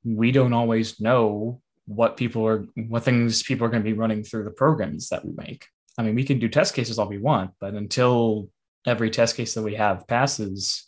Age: 20-39